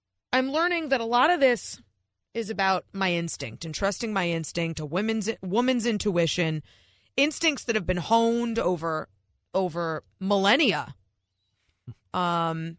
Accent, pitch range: American, 155-230 Hz